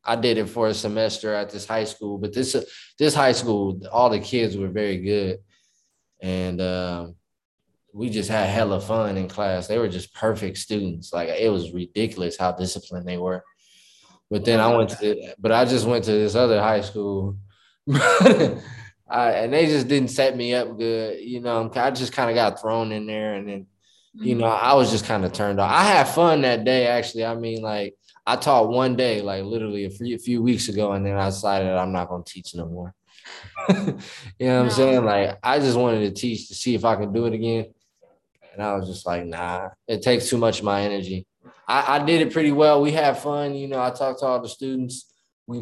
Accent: American